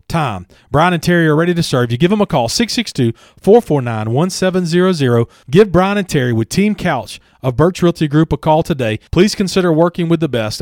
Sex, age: male, 40-59